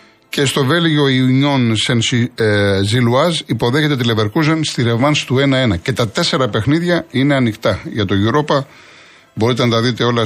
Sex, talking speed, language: male, 160 wpm, Greek